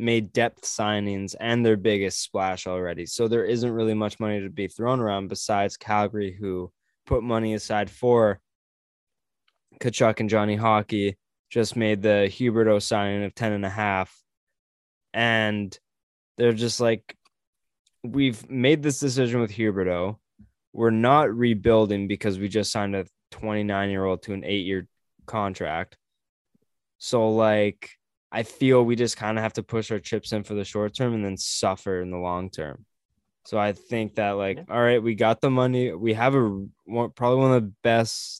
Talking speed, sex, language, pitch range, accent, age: 165 wpm, male, English, 100-120 Hz, American, 10-29